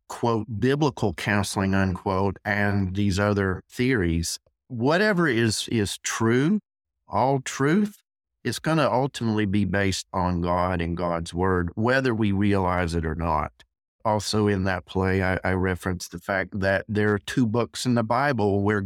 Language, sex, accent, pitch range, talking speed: English, male, American, 90-110 Hz, 155 wpm